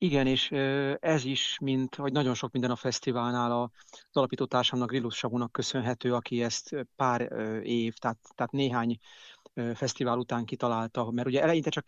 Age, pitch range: 40-59, 120-140 Hz